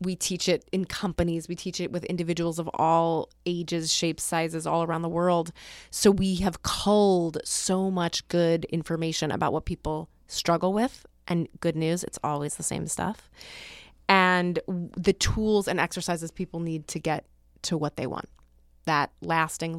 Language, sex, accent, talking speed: English, female, American, 165 wpm